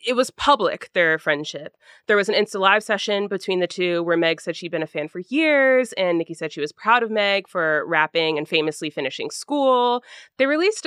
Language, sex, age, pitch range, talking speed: English, female, 20-39, 165-235 Hz, 215 wpm